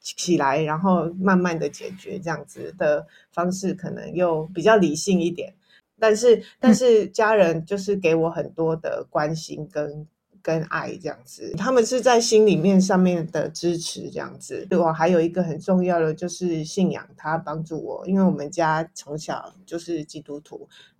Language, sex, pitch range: Chinese, female, 160-205 Hz